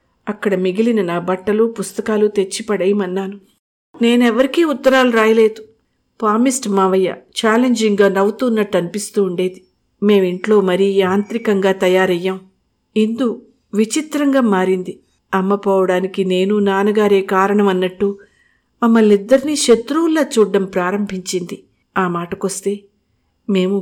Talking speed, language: 85 wpm, Telugu